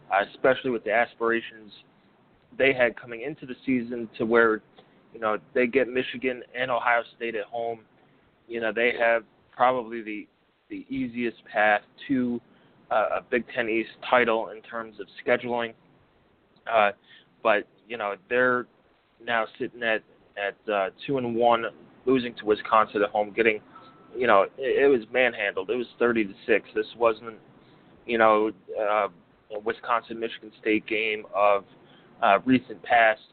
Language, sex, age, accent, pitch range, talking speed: English, male, 20-39, American, 110-125 Hz, 155 wpm